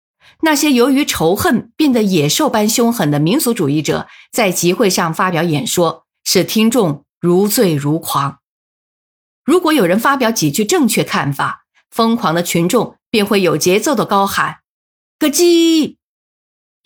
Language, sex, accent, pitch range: Chinese, female, native, 170-255 Hz